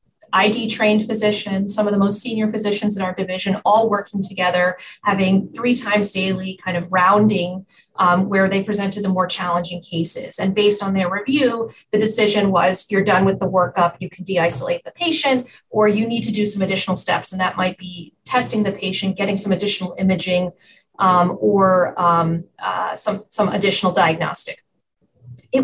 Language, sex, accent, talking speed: English, female, American, 175 wpm